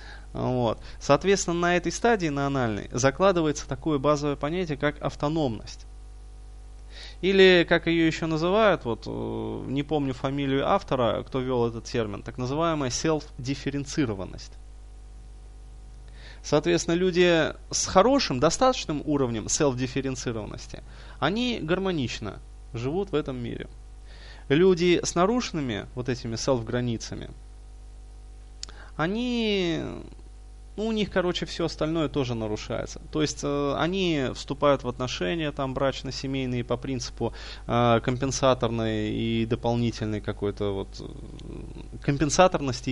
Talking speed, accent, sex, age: 105 wpm, native, male, 20-39